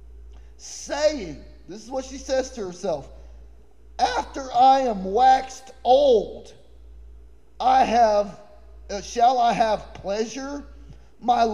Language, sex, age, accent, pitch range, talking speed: English, male, 30-49, American, 185-270 Hz, 110 wpm